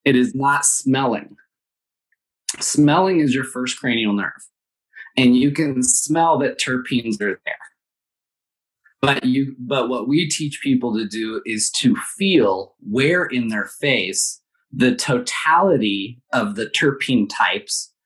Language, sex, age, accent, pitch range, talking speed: English, male, 20-39, American, 110-150 Hz, 135 wpm